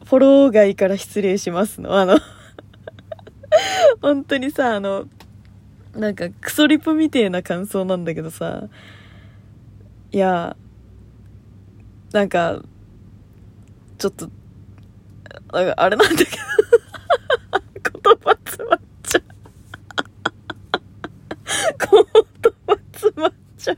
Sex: female